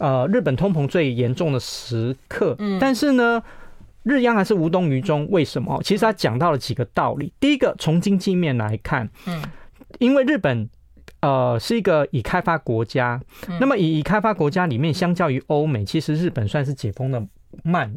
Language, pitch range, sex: Chinese, 125-180 Hz, male